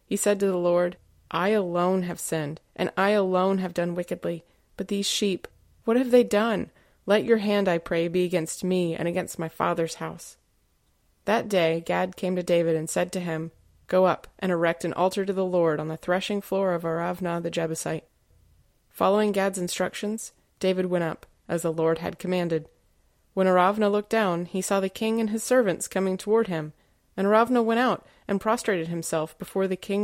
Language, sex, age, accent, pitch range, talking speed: English, female, 30-49, American, 170-200 Hz, 195 wpm